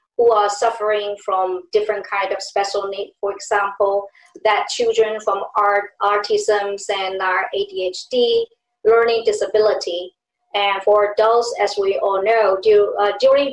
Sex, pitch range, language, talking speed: male, 195-230 Hz, English, 135 wpm